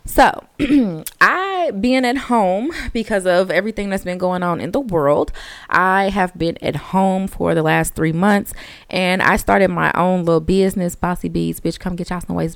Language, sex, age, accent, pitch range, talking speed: English, female, 20-39, American, 180-235 Hz, 190 wpm